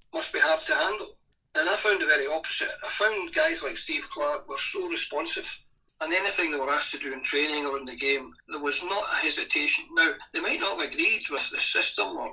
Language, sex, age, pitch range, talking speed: English, male, 60-79, 315-410 Hz, 235 wpm